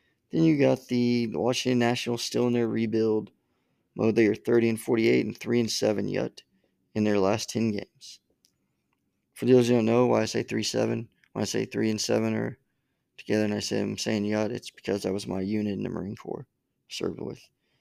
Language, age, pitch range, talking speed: English, 20-39, 110-125 Hz, 210 wpm